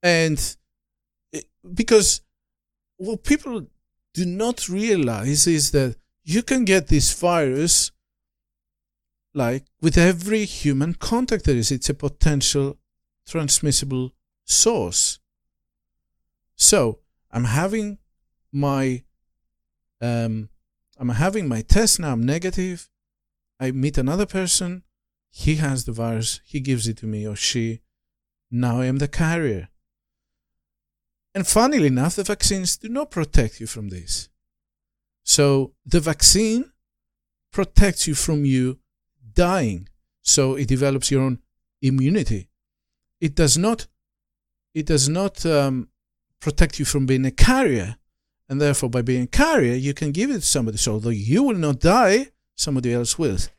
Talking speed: 130 wpm